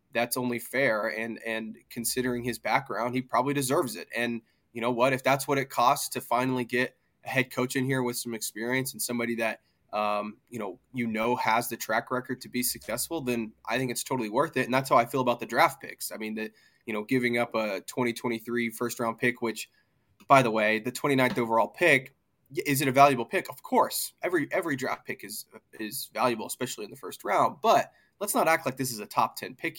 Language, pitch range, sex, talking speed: English, 115-130 Hz, male, 230 wpm